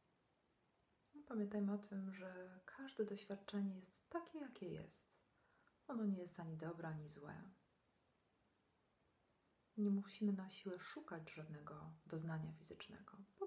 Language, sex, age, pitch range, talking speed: Polish, female, 40-59, 170-215 Hz, 115 wpm